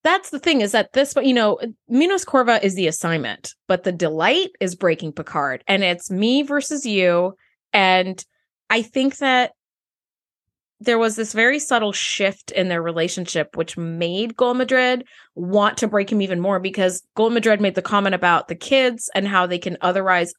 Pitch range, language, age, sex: 185-250 Hz, English, 20-39, female